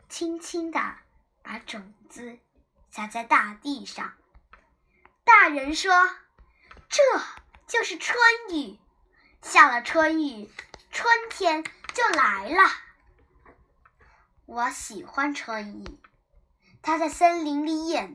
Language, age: Chinese, 10-29